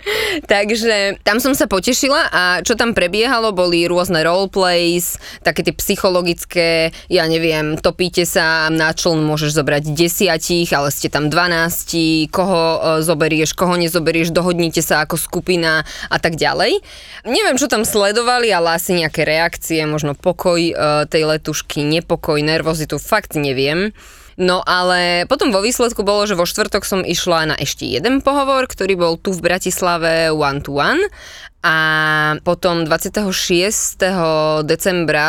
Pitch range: 155-190 Hz